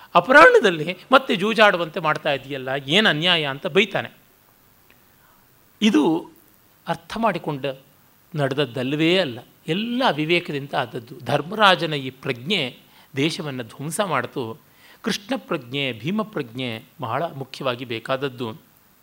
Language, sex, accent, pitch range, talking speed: Kannada, male, native, 135-185 Hz, 90 wpm